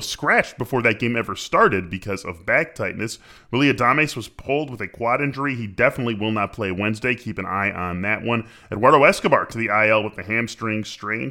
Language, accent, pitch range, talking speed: English, American, 105-135 Hz, 205 wpm